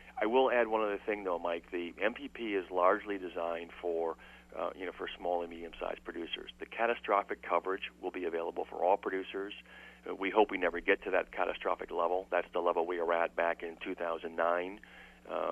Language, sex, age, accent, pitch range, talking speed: English, male, 40-59, American, 85-90 Hz, 195 wpm